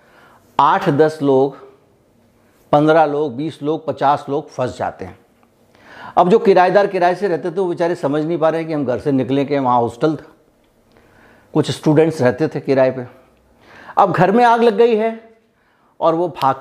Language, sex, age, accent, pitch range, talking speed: Hindi, male, 60-79, native, 135-180 Hz, 180 wpm